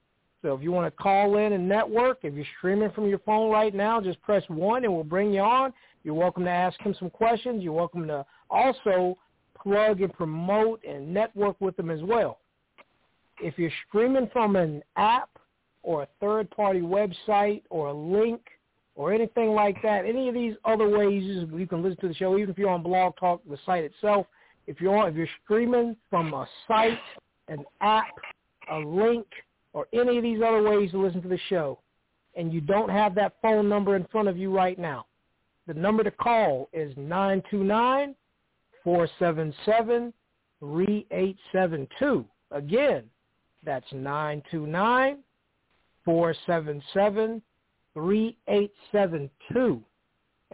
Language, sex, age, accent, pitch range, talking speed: English, male, 50-69, American, 170-215 Hz, 150 wpm